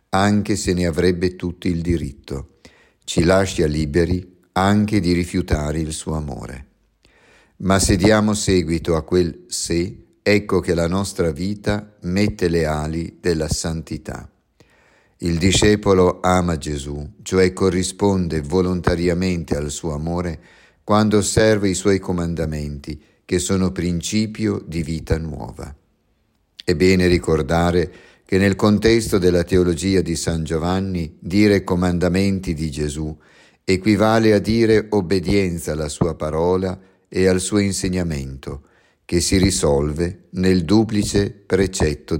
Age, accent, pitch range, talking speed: 50-69, native, 80-95 Hz, 120 wpm